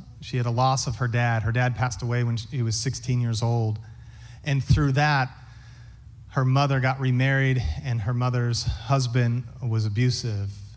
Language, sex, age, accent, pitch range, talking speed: English, male, 30-49, American, 120-140 Hz, 175 wpm